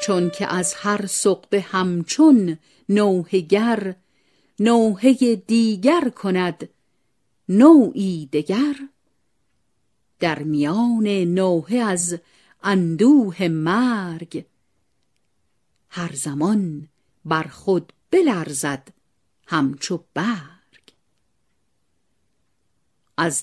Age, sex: 50-69, female